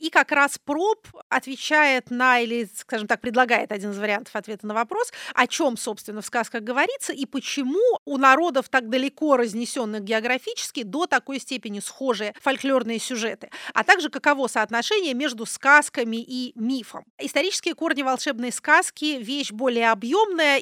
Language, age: Russian, 30-49